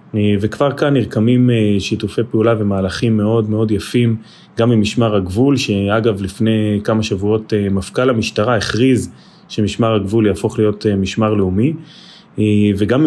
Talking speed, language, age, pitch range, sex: 125 wpm, Hebrew, 30-49, 105-135 Hz, male